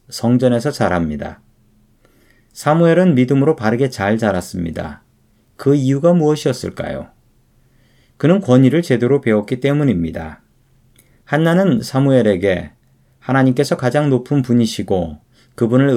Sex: male